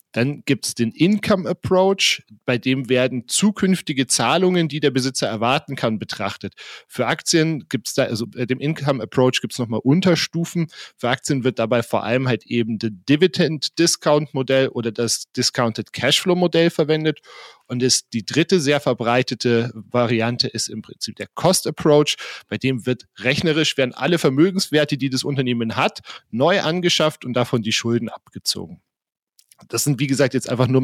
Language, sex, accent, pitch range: German, male, German, 115-150 Hz